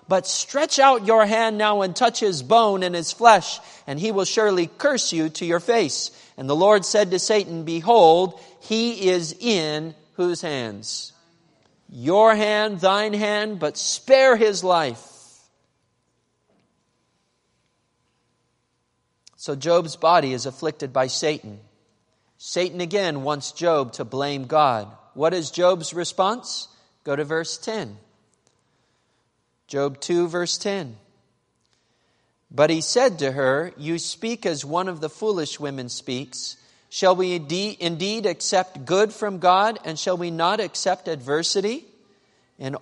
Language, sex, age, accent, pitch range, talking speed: English, male, 40-59, American, 130-195 Hz, 135 wpm